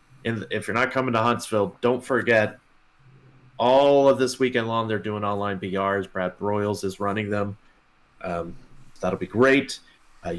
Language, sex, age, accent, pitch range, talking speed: English, male, 30-49, American, 100-125 Hz, 155 wpm